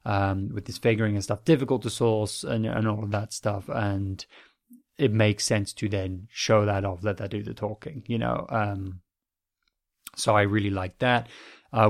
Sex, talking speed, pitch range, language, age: male, 190 wpm, 100-115 Hz, English, 20-39